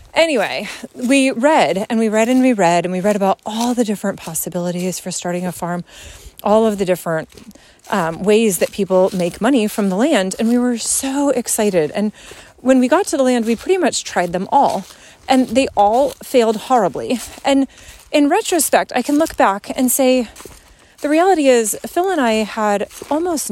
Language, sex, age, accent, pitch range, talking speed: English, female, 30-49, American, 195-265 Hz, 190 wpm